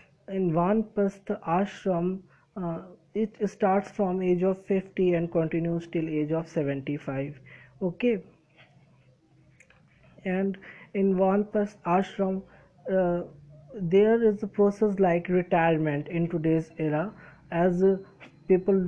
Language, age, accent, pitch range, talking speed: Hindi, 20-39, native, 170-200 Hz, 110 wpm